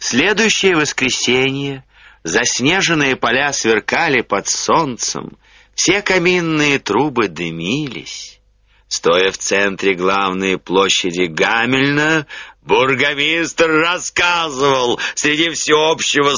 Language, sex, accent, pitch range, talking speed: Russian, male, native, 120-195 Hz, 75 wpm